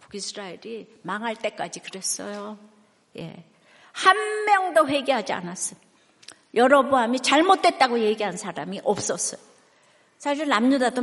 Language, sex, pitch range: Korean, female, 200-280 Hz